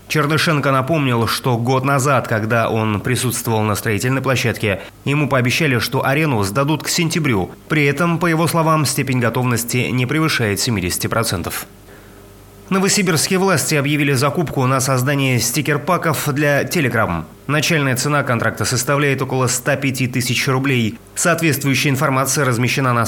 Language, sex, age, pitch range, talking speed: Russian, male, 30-49, 115-145 Hz, 125 wpm